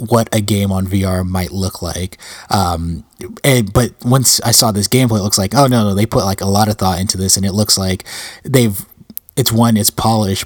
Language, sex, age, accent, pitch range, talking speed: English, male, 20-39, American, 100-115 Hz, 230 wpm